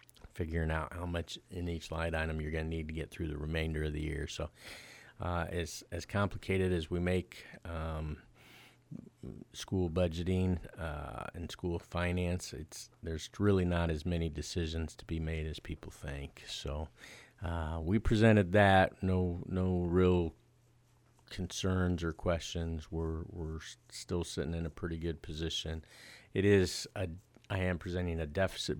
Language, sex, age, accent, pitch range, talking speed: English, male, 40-59, American, 80-90 Hz, 155 wpm